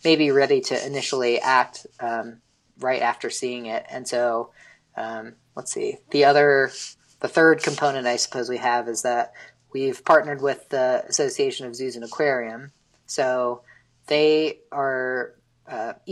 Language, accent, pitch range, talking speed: English, American, 120-145 Hz, 145 wpm